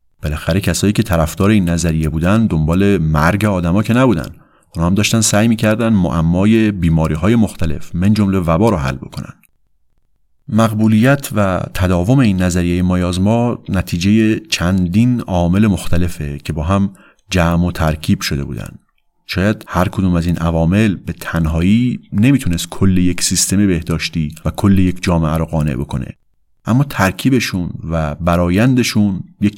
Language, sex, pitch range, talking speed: Persian, male, 85-105 Hz, 145 wpm